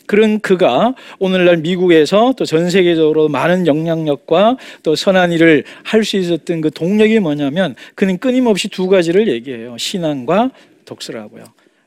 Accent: native